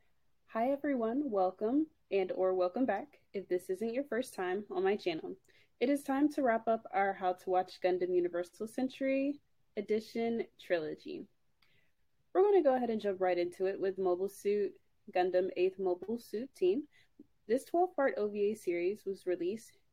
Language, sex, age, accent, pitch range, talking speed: English, female, 20-39, American, 185-280 Hz, 165 wpm